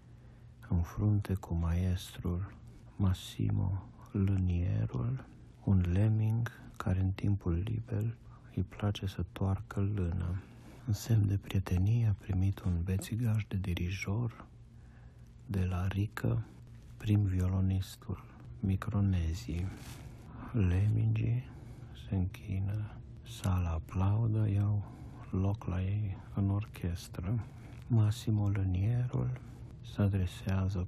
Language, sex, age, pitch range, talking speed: Romanian, male, 60-79, 95-120 Hz, 95 wpm